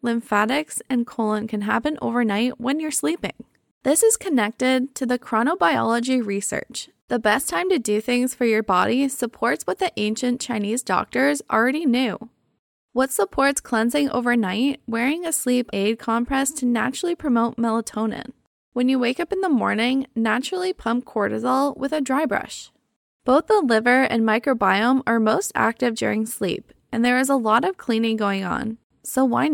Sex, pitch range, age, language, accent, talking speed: female, 230-275 Hz, 10-29, English, American, 165 wpm